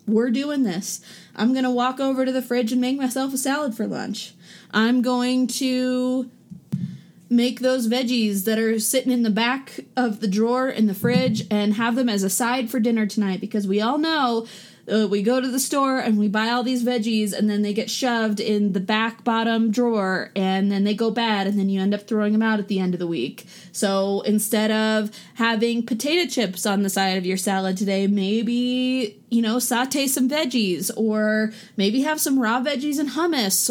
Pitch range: 205-250 Hz